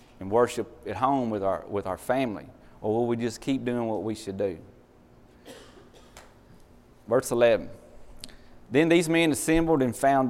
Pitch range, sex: 105-130 Hz, male